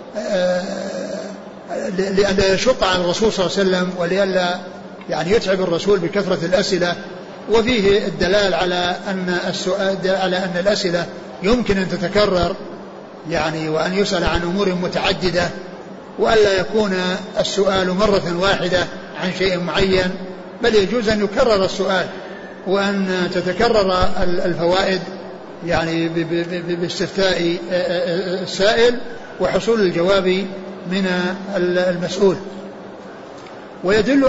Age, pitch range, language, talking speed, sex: 50-69, 180-200 Hz, Arabic, 100 wpm, male